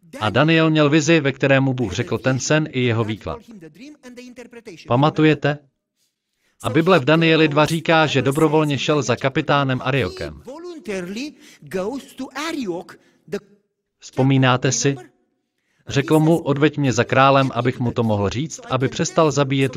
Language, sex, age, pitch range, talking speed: Slovak, male, 40-59, 125-165 Hz, 125 wpm